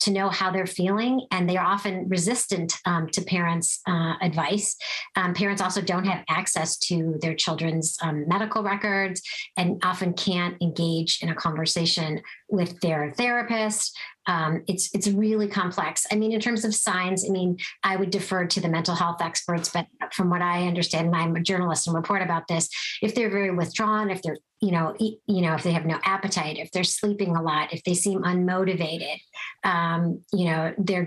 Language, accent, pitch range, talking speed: English, American, 170-200 Hz, 190 wpm